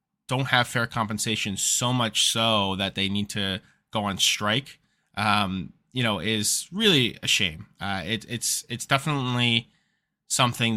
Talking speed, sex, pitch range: 145 wpm, male, 100-130 Hz